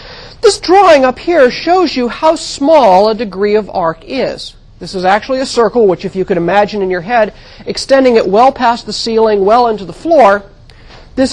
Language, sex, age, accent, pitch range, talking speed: English, male, 40-59, American, 185-275 Hz, 195 wpm